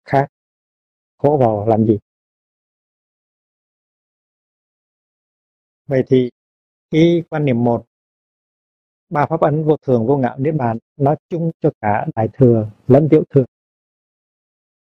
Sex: male